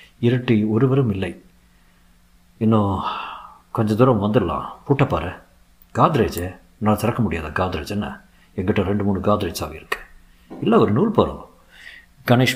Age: 50-69